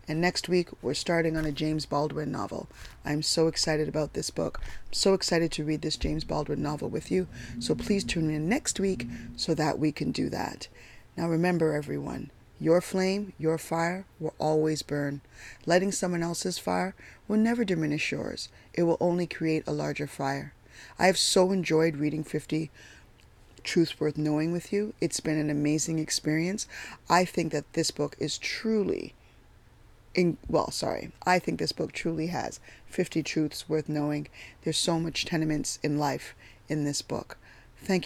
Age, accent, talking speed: 20-39, American, 175 wpm